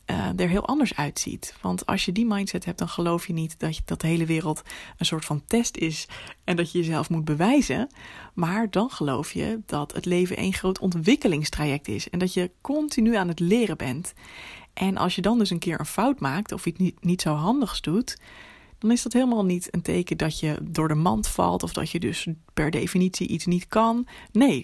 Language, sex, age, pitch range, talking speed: Dutch, female, 20-39, 165-220 Hz, 220 wpm